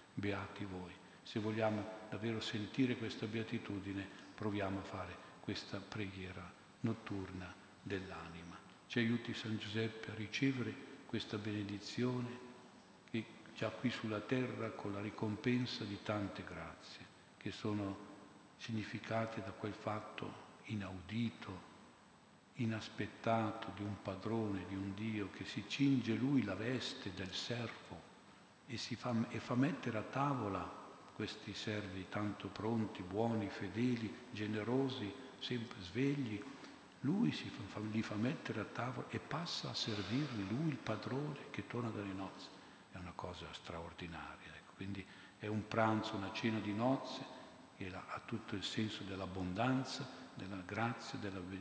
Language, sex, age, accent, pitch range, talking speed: Italian, male, 50-69, native, 100-115 Hz, 130 wpm